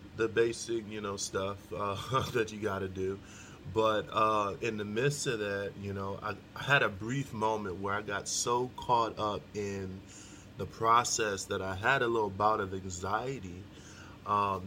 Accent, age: American, 20-39